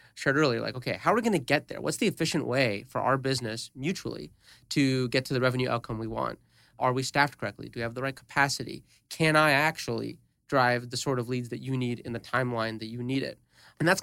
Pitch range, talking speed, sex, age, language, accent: 120-145 Hz, 245 wpm, male, 30-49, English, American